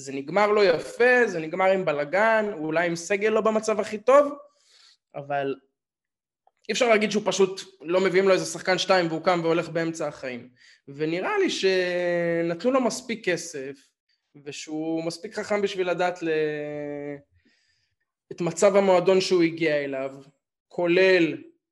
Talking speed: 120 wpm